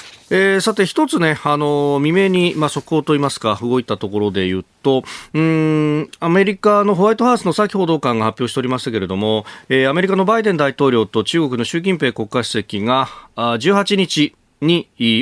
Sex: male